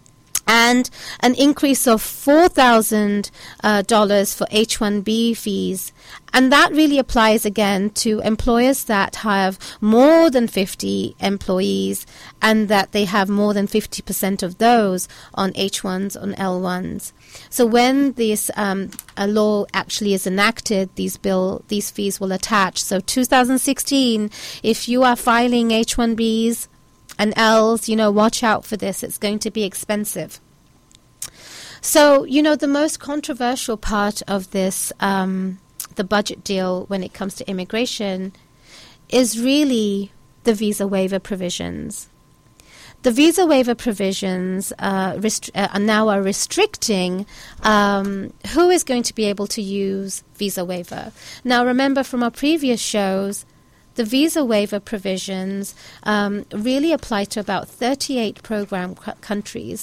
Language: English